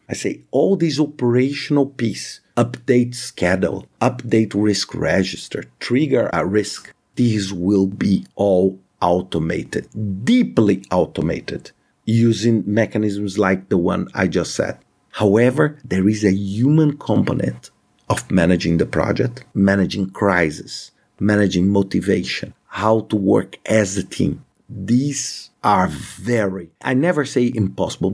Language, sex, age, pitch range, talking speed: English, male, 50-69, 100-130 Hz, 120 wpm